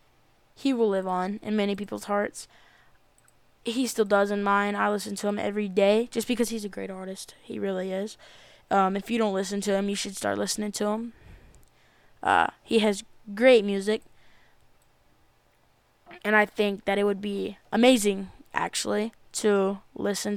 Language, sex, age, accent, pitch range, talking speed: English, female, 10-29, American, 205-230 Hz, 170 wpm